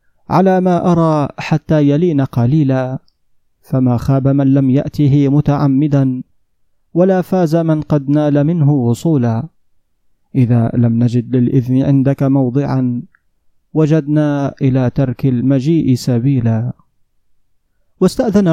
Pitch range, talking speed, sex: 140-180 Hz, 100 wpm, male